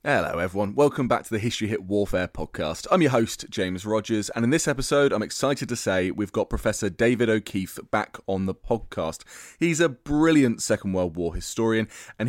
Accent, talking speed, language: British, 195 wpm, English